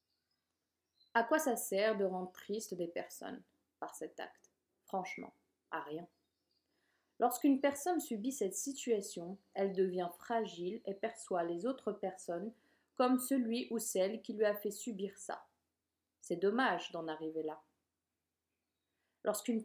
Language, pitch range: French, 175-240 Hz